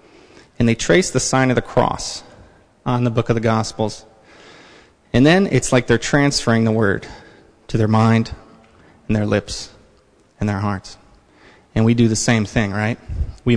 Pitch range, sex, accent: 110-125 Hz, male, American